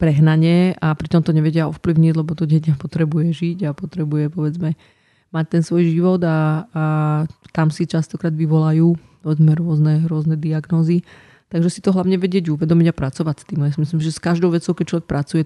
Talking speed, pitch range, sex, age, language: 185 wpm, 150-170 Hz, female, 20-39, Slovak